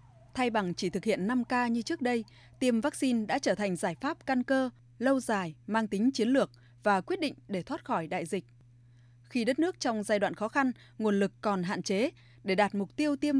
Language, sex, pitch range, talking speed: Vietnamese, female, 175-265 Hz, 225 wpm